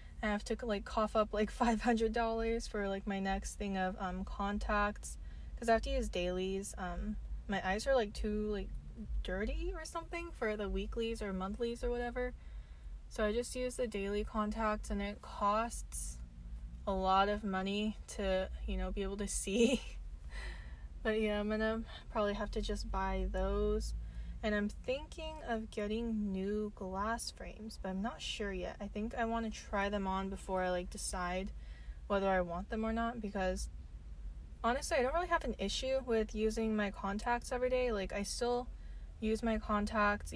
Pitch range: 190-225 Hz